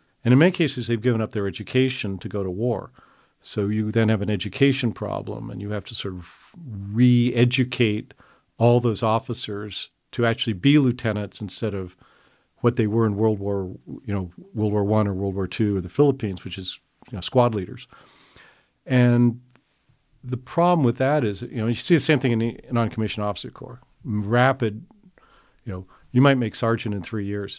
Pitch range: 105-125 Hz